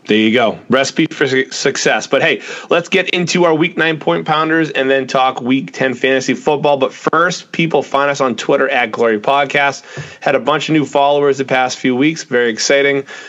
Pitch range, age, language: 115-145 Hz, 30-49, English